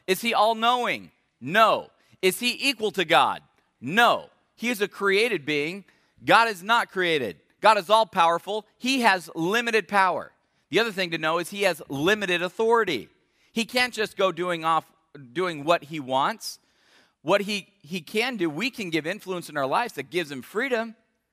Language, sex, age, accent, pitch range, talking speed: English, male, 40-59, American, 160-220 Hz, 175 wpm